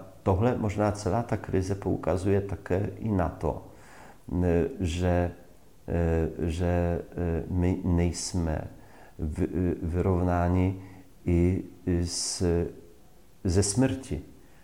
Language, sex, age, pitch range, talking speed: English, male, 40-59, 85-100 Hz, 75 wpm